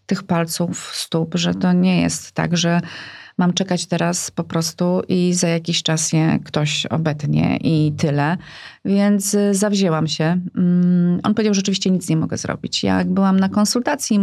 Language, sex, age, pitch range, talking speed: Polish, female, 30-49, 160-190 Hz, 165 wpm